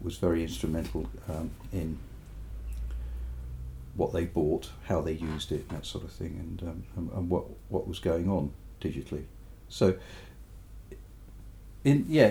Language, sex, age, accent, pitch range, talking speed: English, male, 50-69, British, 85-105 Hz, 140 wpm